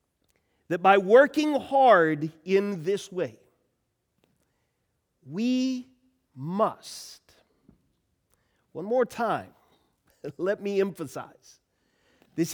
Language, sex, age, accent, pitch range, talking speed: English, male, 40-59, American, 140-210 Hz, 75 wpm